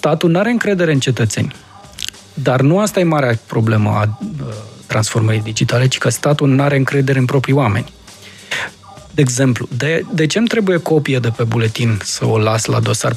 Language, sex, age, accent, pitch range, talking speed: Romanian, male, 20-39, native, 125-165 Hz, 180 wpm